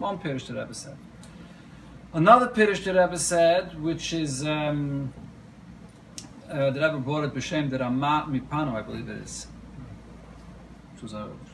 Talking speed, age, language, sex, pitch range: 140 wpm, 40-59, English, male, 135-165 Hz